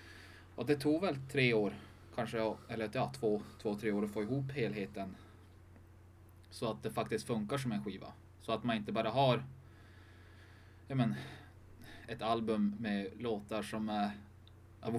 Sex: male